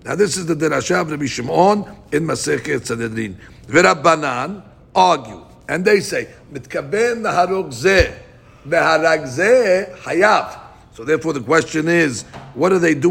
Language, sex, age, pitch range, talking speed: English, male, 60-79, 140-205 Hz, 120 wpm